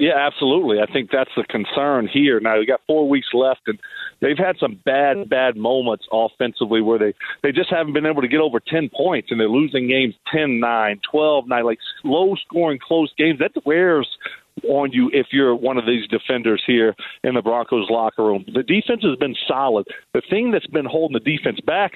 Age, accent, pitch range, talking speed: 40-59, American, 120-165 Hz, 200 wpm